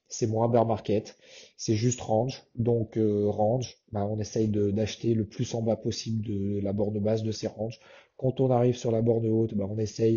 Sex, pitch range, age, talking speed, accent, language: male, 110-125 Hz, 30-49, 220 wpm, French, French